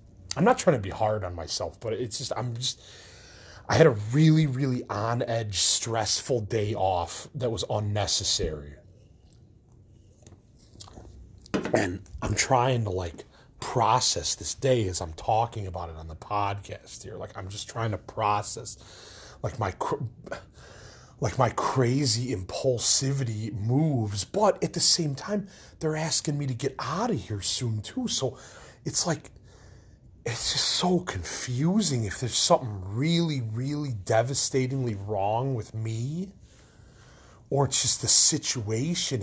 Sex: male